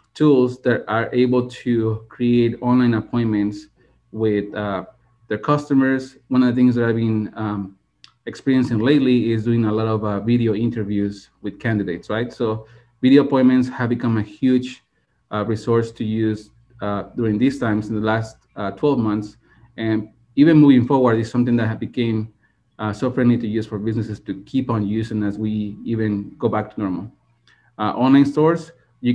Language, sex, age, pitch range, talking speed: English, male, 30-49, 110-125 Hz, 175 wpm